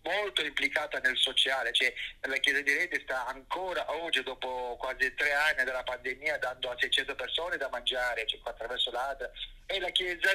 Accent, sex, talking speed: native, male, 175 wpm